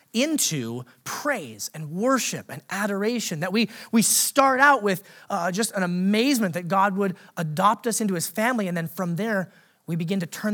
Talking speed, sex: 180 wpm, male